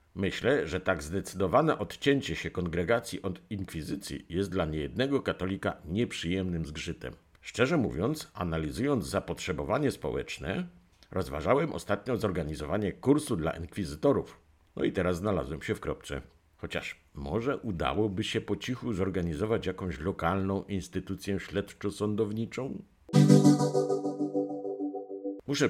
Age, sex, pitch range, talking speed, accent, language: 50-69, male, 95-120 Hz, 105 wpm, native, Polish